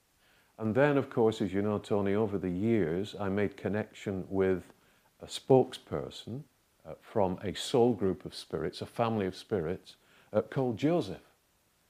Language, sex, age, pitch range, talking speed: English, male, 50-69, 95-115 Hz, 155 wpm